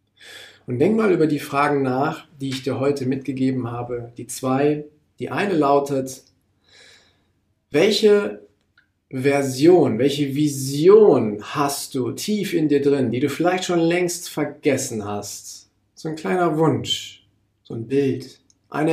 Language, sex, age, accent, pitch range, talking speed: German, male, 40-59, German, 110-150 Hz, 135 wpm